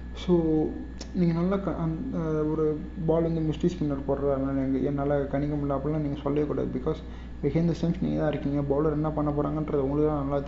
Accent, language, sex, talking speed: native, Tamil, male, 160 wpm